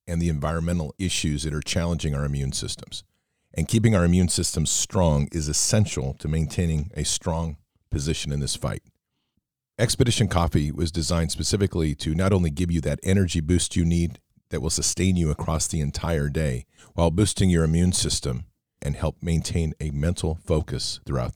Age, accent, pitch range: 40-59, American, 80-95 Hz